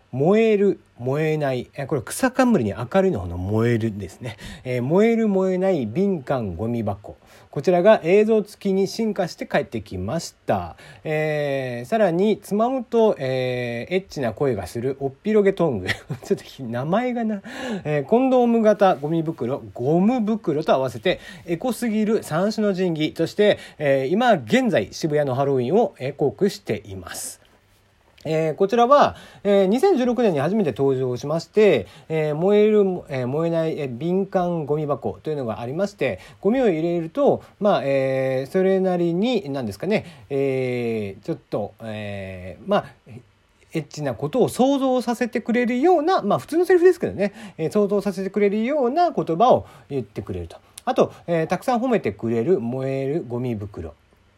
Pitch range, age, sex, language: 125-205 Hz, 40-59, male, Japanese